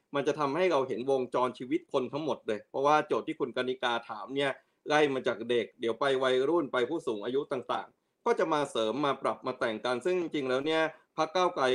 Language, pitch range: Thai, 125-165 Hz